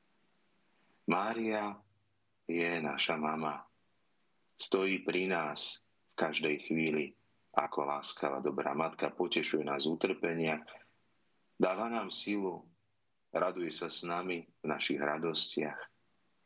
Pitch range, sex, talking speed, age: 75-95 Hz, male, 100 wpm, 30-49